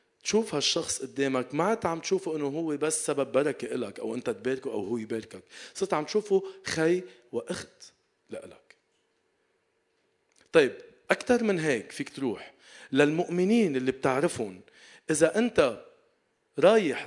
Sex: male